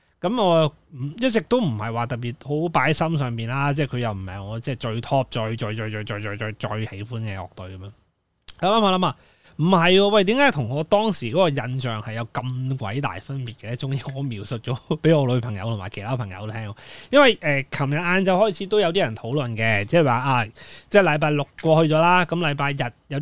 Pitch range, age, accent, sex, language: 115-165 Hz, 20-39, native, male, Chinese